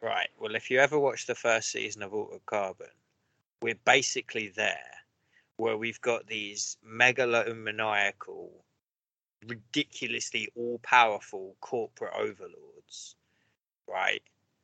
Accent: British